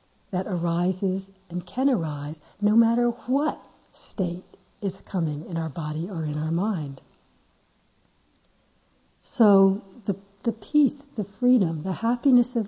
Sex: female